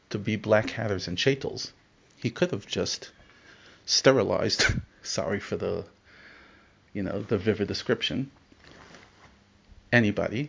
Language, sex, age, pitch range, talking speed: English, male, 40-59, 100-125 Hz, 115 wpm